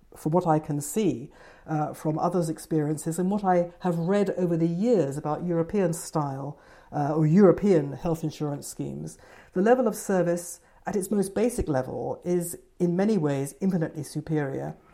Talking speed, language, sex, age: 165 wpm, English, female, 60-79